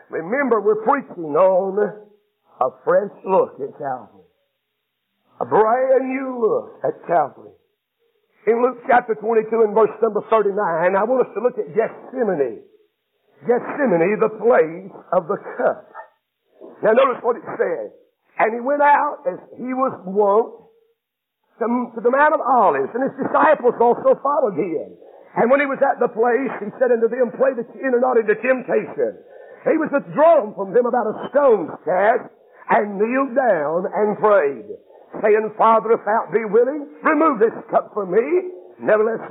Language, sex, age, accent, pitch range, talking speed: English, male, 50-69, American, 225-320 Hz, 160 wpm